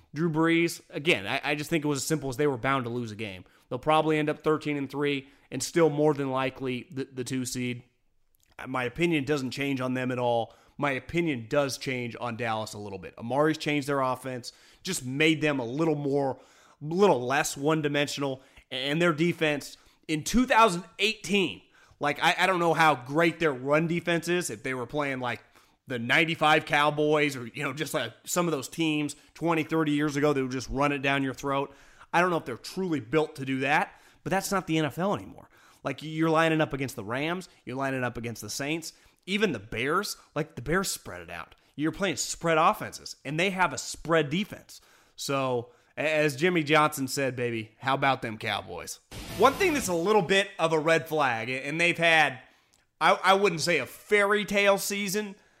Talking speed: 205 wpm